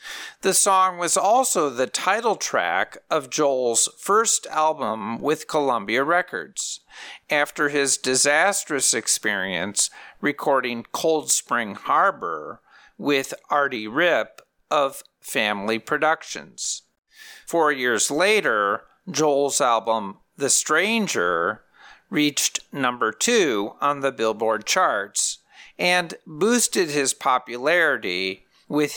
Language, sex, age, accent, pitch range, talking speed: English, male, 50-69, American, 120-180 Hz, 95 wpm